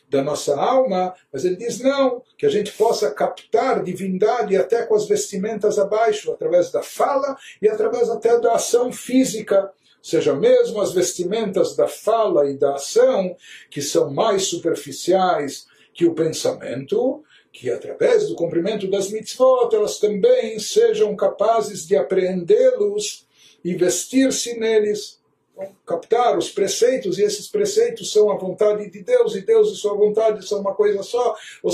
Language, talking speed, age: Portuguese, 150 wpm, 60-79